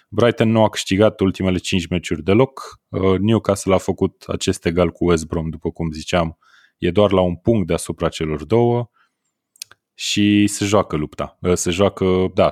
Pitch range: 85-105 Hz